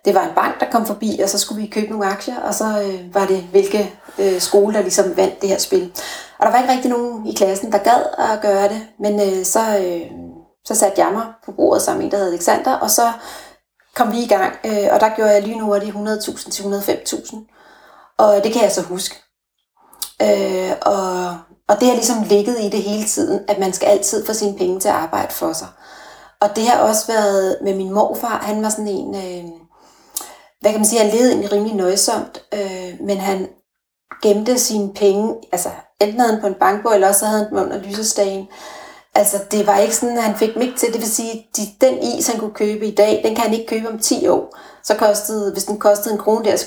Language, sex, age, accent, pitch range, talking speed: Danish, female, 30-49, native, 195-220 Hz, 235 wpm